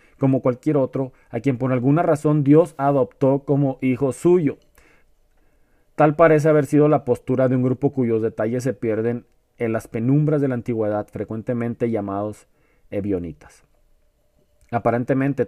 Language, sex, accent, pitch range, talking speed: Spanish, male, Mexican, 120-140 Hz, 140 wpm